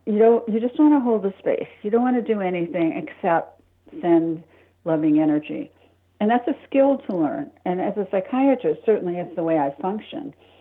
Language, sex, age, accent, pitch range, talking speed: English, female, 60-79, American, 165-195 Hz, 200 wpm